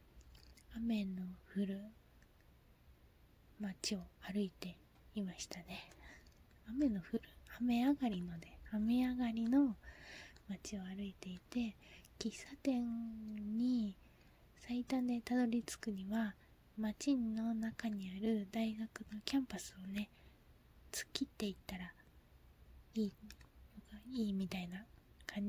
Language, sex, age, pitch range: Japanese, female, 20-39, 185-220 Hz